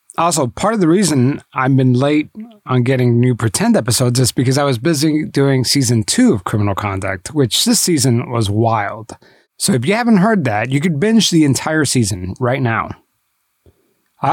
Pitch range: 125-185 Hz